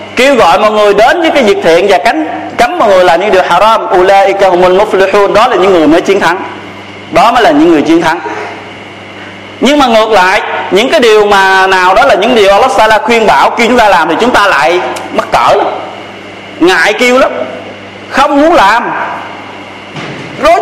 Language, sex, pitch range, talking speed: Vietnamese, male, 185-235 Hz, 190 wpm